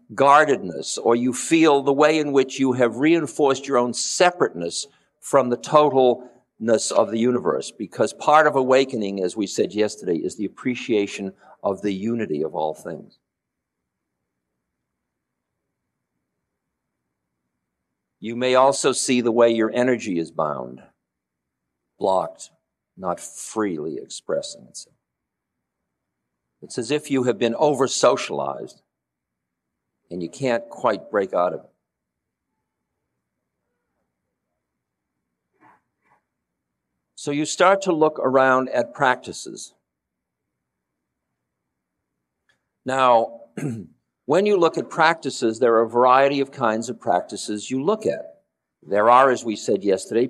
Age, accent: 50-69, American